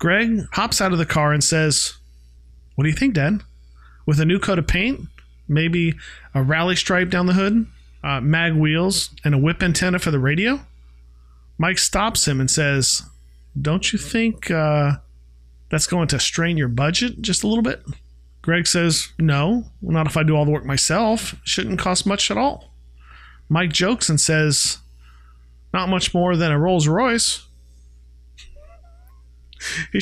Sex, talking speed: male, 165 wpm